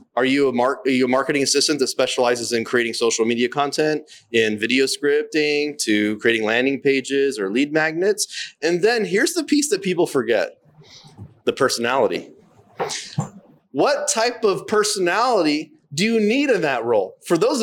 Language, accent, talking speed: English, American, 165 wpm